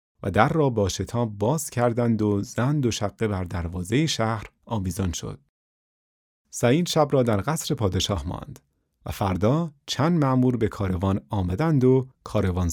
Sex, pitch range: male, 95-130 Hz